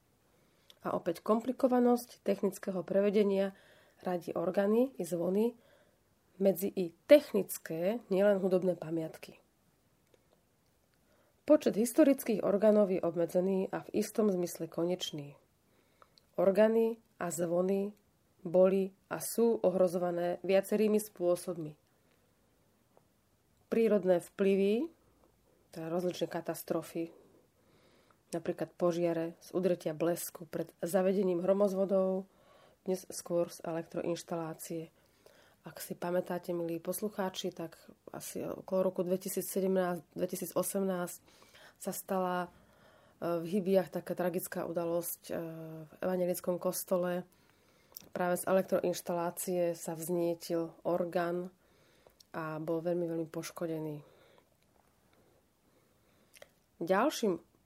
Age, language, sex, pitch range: 30-49, Slovak, female, 170-195 Hz